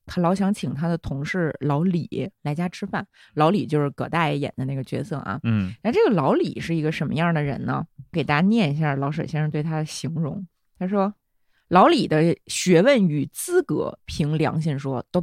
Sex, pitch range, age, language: female, 150-210 Hz, 20-39, Chinese